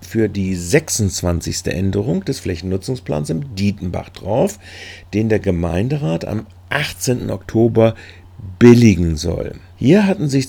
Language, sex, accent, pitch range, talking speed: German, male, German, 90-115 Hz, 115 wpm